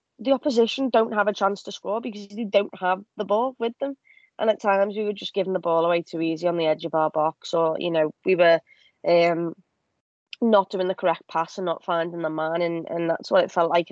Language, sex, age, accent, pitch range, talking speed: English, female, 20-39, British, 165-200 Hz, 245 wpm